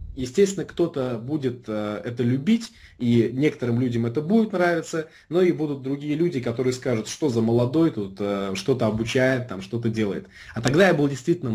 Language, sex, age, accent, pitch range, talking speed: Russian, male, 20-39, native, 115-150 Hz, 175 wpm